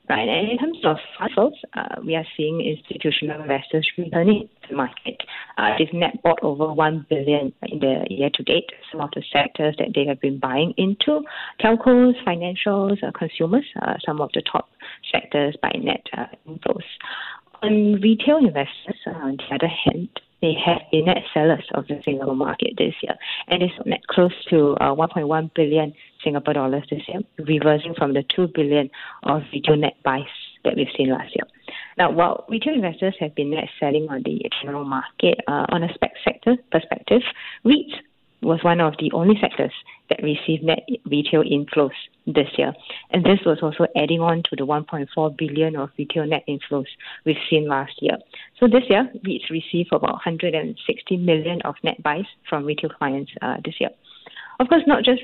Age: 30-49